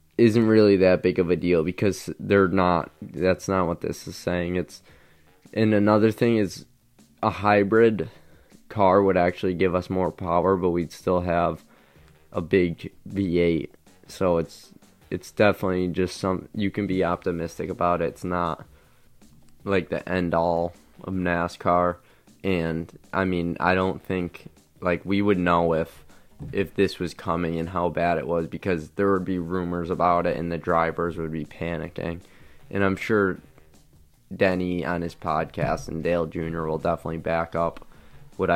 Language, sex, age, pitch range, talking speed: English, male, 20-39, 85-95 Hz, 165 wpm